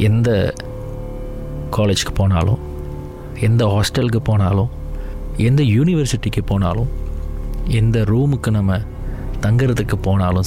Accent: native